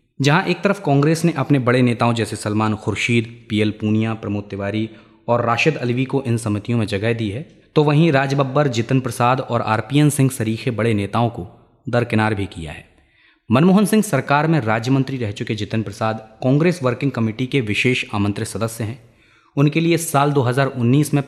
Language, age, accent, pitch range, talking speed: Hindi, 20-39, native, 110-150 Hz, 185 wpm